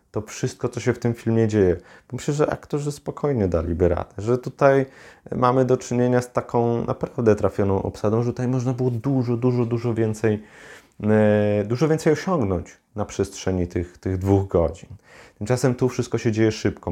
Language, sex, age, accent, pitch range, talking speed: Polish, male, 30-49, native, 90-115 Hz, 165 wpm